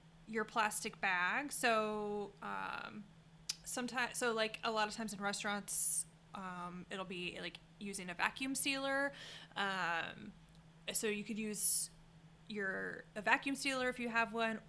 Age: 20-39